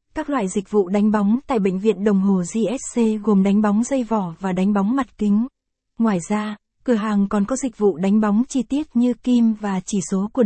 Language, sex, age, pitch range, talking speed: Vietnamese, female, 20-39, 200-235 Hz, 230 wpm